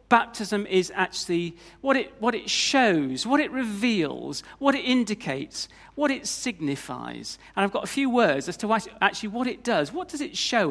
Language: English